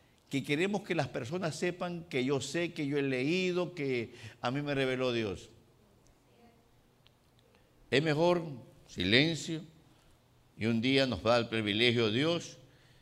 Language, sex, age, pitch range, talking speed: Spanish, male, 50-69, 120-160 Hz, 140 wpm